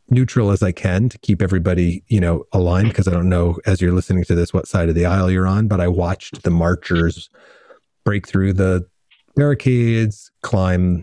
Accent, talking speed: American, 195 wpm